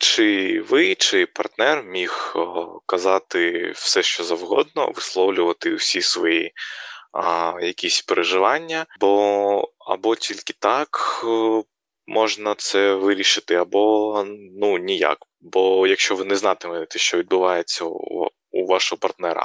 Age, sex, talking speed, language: 20-39, male, 110 wpm, Ukrainian